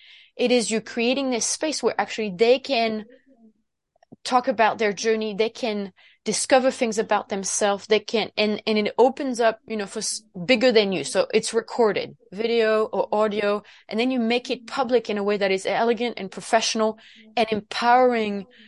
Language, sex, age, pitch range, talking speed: English, female, 20-39, 205-245 Hz, 175 wpm